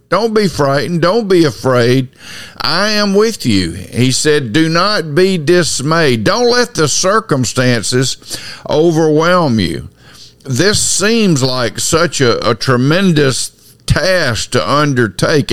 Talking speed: 125 wpm